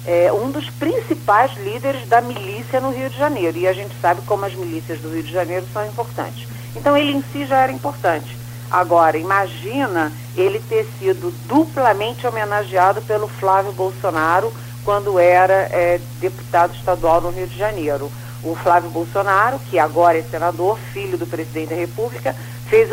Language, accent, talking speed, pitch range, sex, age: Portuguese, Brazilian, 160 wpm, 120-195 Hz, female, 40-59